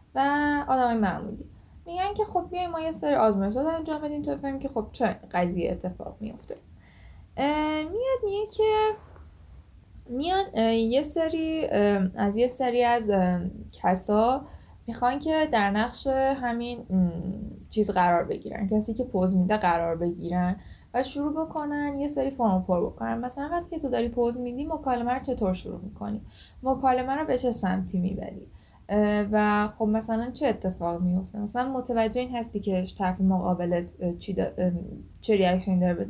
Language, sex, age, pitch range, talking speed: Persian, female, 10-29, 185-260 Hz, 145 wpm